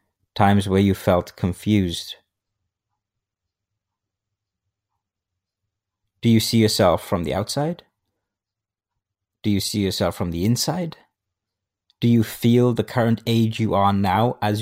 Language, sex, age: English, male, 30-49